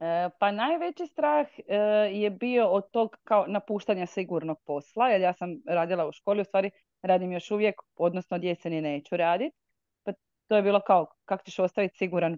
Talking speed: 175 wpm